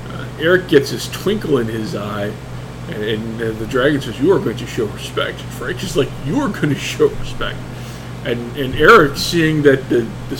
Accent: American